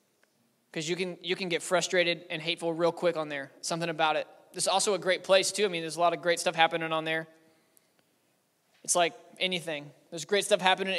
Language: English